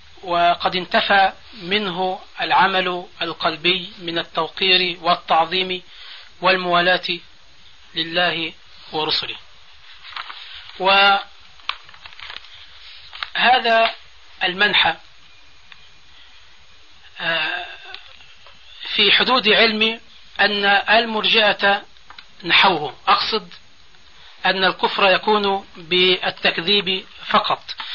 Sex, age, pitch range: male, 40-59, 180-210 Hz